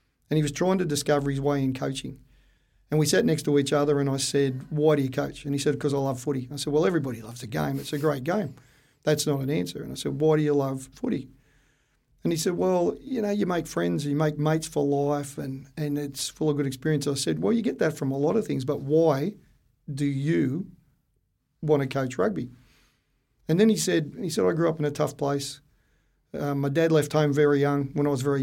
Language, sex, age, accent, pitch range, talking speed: English, male, 40-59, Australian, 140-155 Hz, 250 wpm